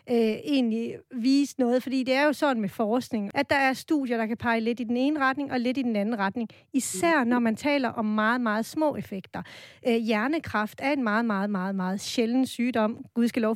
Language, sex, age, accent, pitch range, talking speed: Danish, female, 40-59, native, 225-275 Hz, 220 wpm